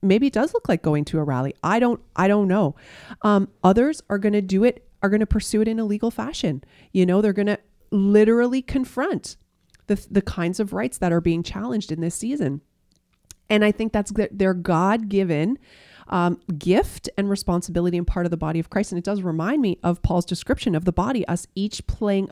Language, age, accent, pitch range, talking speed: English, 30-49, American, 175-220 Hz, 210 wpm